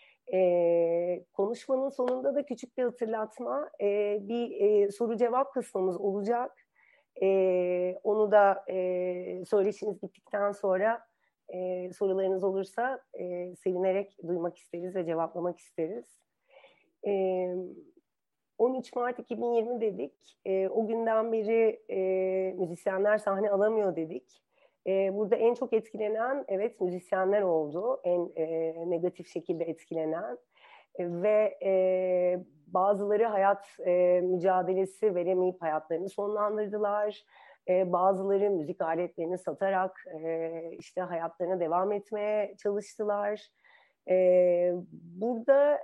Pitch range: 180-225 Hz